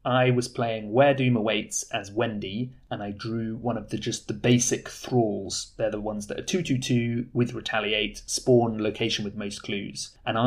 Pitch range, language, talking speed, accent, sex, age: 105-125 Hz, English, 185 wpm, British, male, 30-49